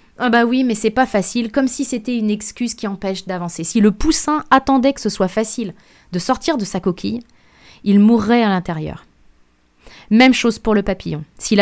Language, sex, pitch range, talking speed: French, female, 195-240 Hz, 195 wpm